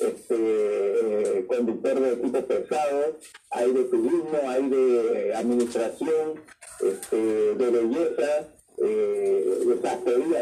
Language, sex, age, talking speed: Spanish, male, 50-69, 110 wpm